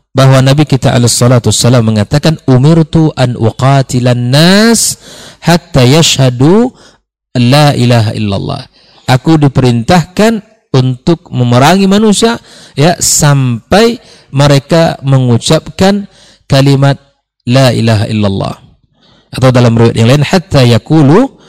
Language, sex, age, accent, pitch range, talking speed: Indonesian, male, 50-69, native, 120-155 Hz, 100 wpm